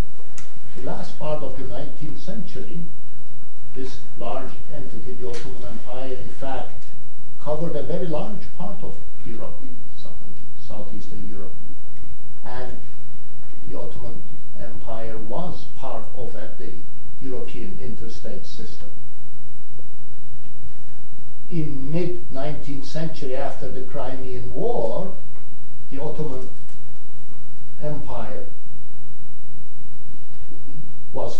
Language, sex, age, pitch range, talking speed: English, male, 60-79, 125-155 Hz, 85 wpm